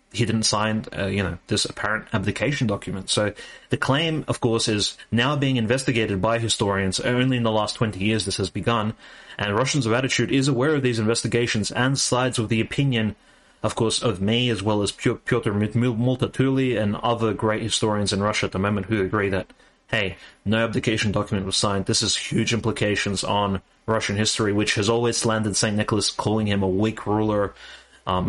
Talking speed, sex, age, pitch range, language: 190 wpm, male, 30-49, 100-120 Hz, English